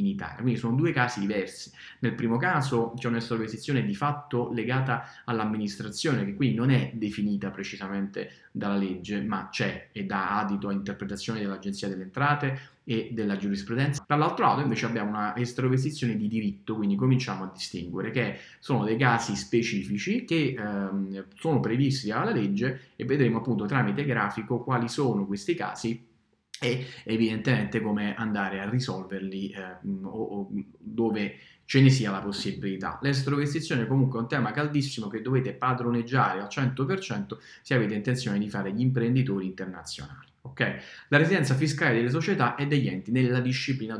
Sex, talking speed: male, 155 wpm